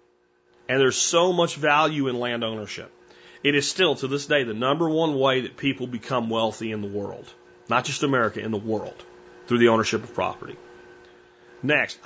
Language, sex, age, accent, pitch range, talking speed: English, male, 40-59, American, 105-160 Hz, 185 wpm